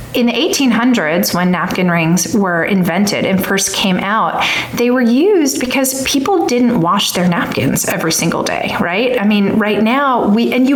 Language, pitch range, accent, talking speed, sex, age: English, 175-225 Hz, American, 180 wpm, female, 30-49